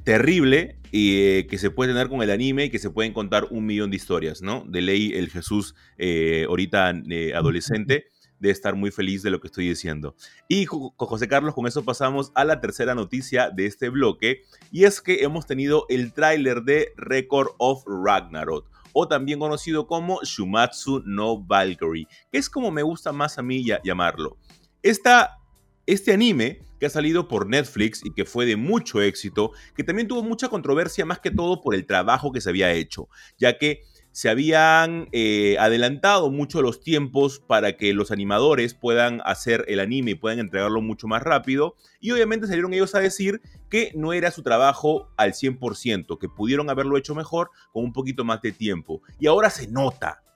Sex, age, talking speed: male, 30-49, 185 wpm